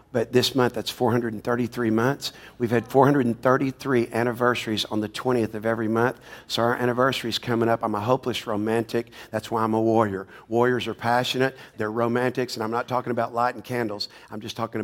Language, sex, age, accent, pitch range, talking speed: English, male, 50-69, American, 110-125 Hz, 185 wpm